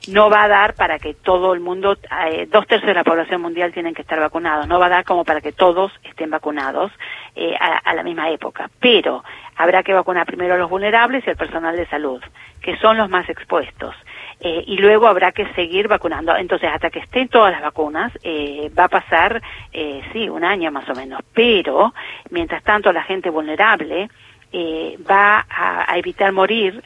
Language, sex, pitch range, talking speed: Spanish, female, 165-210 Hz, 205 wpm